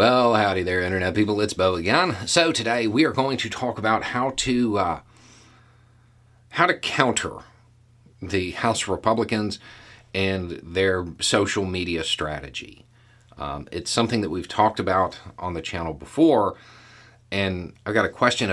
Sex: male